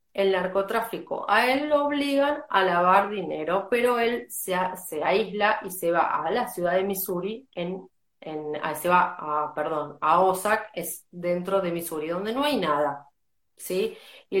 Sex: female